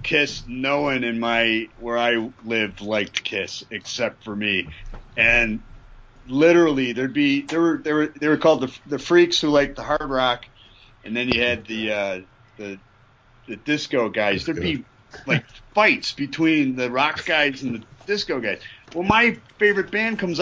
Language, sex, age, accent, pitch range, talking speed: English, male, 40-59, American, 115-150 Hz, 175 wpm